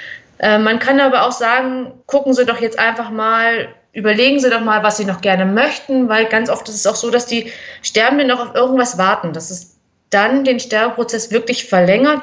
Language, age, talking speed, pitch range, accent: German, 30-49, 200 wpm, 210-255 Hz, German